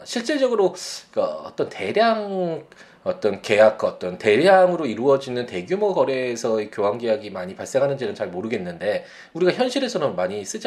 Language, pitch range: Korean, 120-190 Hz